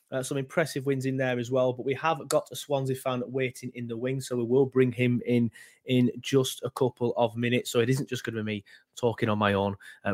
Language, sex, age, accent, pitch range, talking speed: English, male, 20-39, British, 110-140 Hz, 260 wpm